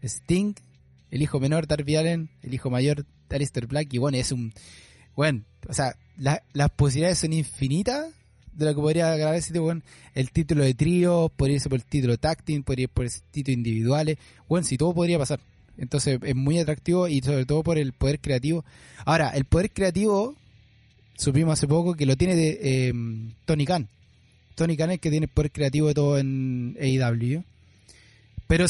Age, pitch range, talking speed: 20-39, 130-160 Hz, 190 wpm